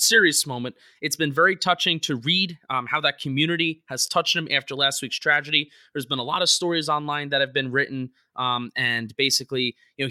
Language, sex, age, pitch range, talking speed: English, male, 20-39, 130-170 Hz, 210 wpm